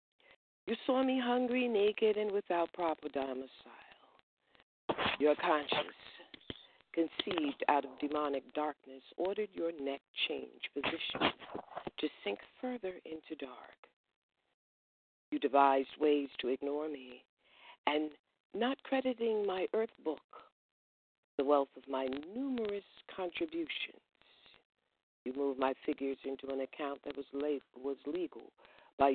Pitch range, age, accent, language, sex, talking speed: 135-165 Hz, 50-69, American, English, female, 115 wpm